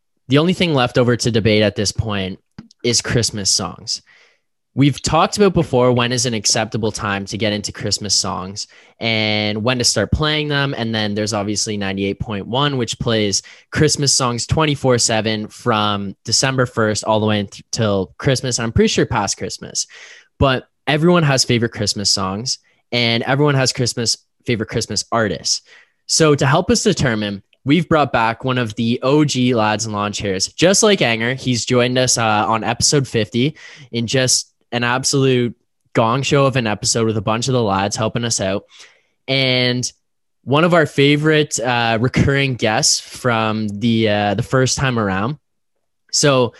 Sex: male